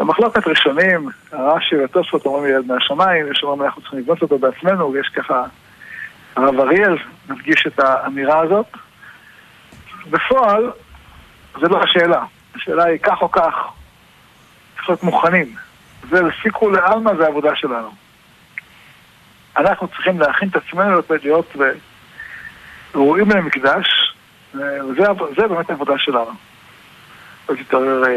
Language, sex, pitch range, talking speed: Hebrew, male, 140-175 Hz, 115 wpm